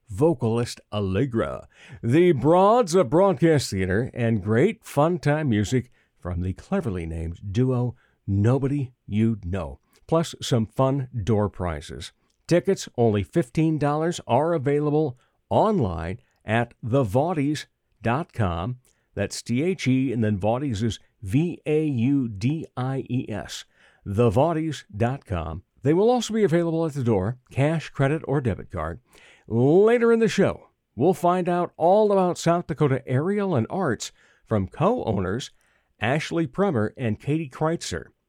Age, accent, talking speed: 60-79, American, 120 wpm